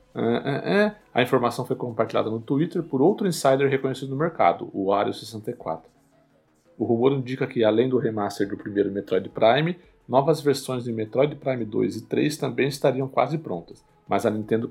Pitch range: 110-135 Hz